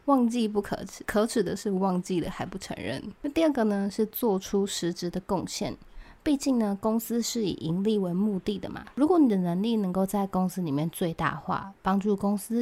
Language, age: Chinese, 20-39